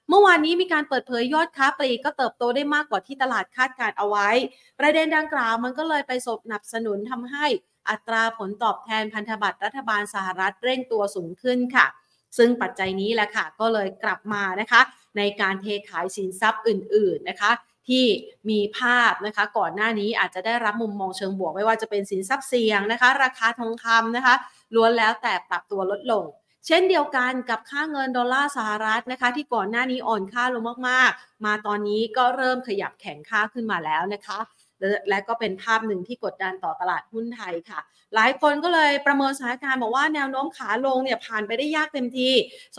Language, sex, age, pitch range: Thai, female, 30-49, 205-255 Hz